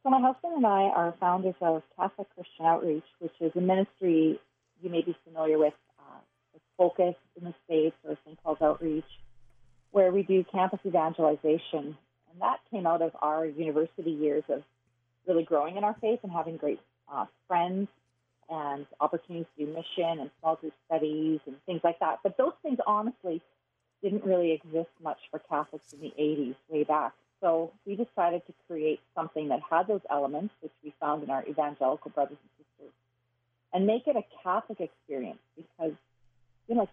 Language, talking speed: English, 180 wpm